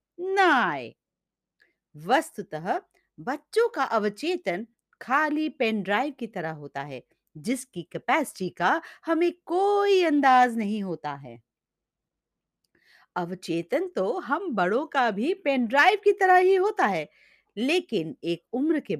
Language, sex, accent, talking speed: Hindi, female, native, 140 wpm